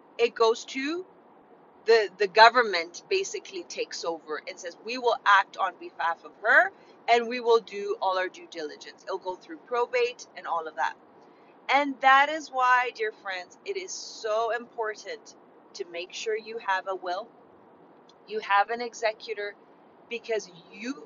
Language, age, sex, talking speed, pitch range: English, 30-49, female, 160 wpm, 210-300 Hz